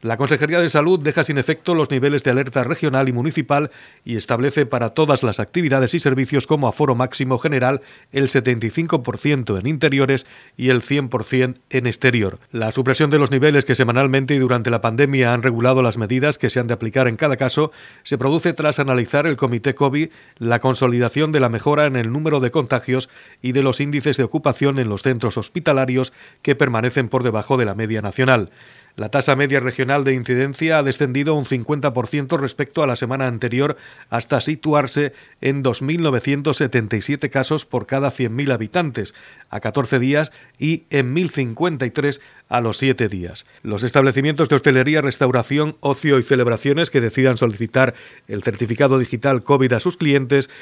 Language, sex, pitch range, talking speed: Spanish, male, 125-145 Hz, 170 wpm